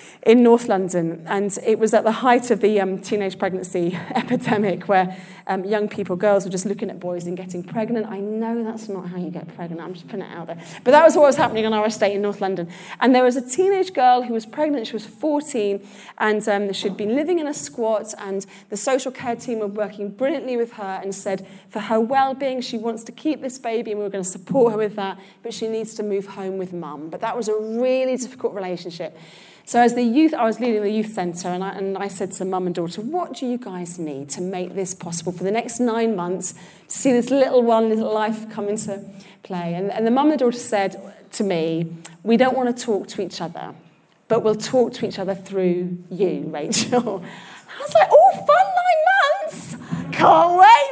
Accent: British